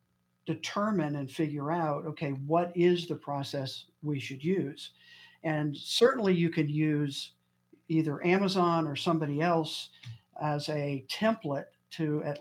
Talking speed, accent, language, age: 130 wpm, American, English, 50-69